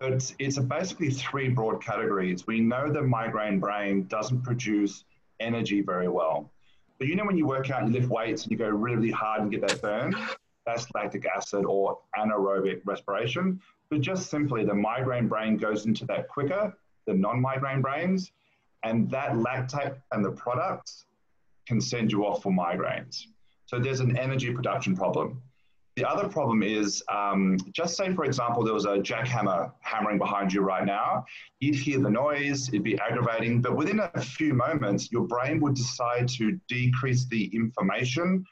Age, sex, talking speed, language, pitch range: 30-49, male, 175 wpm, English, 105-135 Hz